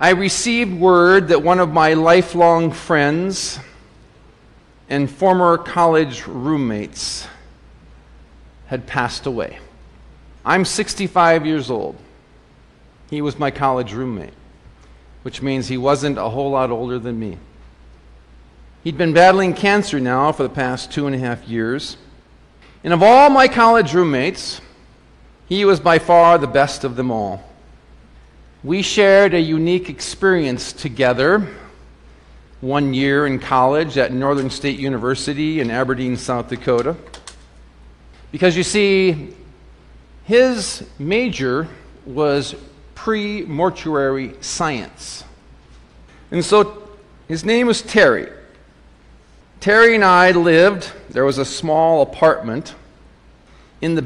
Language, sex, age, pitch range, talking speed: English, male, 50-69, 110-180 Hz, 120 wpm